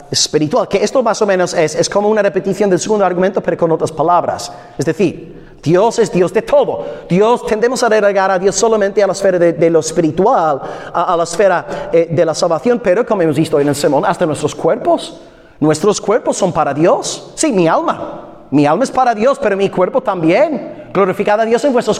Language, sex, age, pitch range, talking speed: Spanish, male, 30-49, 175-240 Hz, 215 wpm